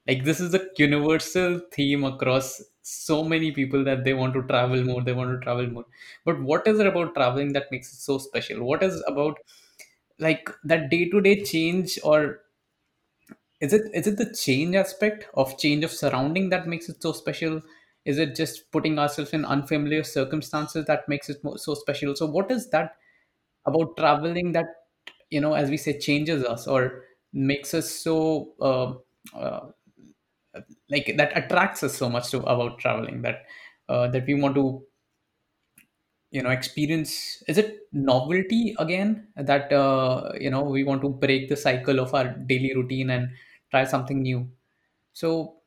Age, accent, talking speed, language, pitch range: 20-39, Indian, 170 wpm, English, 130-160 Hz